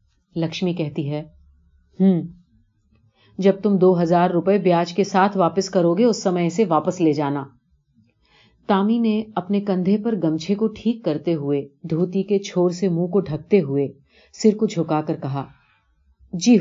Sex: female